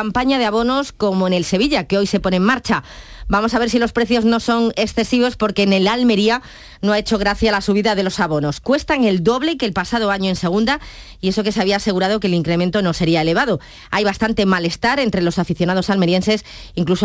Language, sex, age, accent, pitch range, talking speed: Spanish, female, 20-39, Spanish, 185-230 Hz, 225 wpm